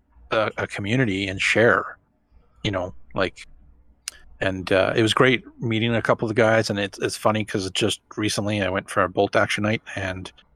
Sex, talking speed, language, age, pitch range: male, 190 wpm, English, 30-49, 95-110 Hz